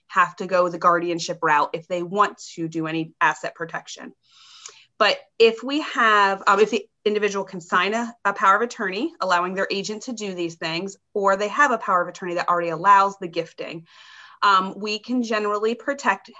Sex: female